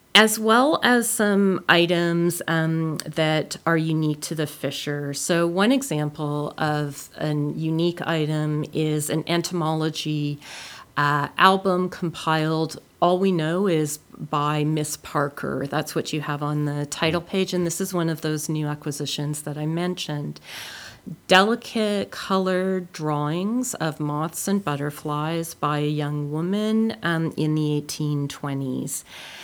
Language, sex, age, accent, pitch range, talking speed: English, female, 40-59, American, 150-175 Hz, 135 wpm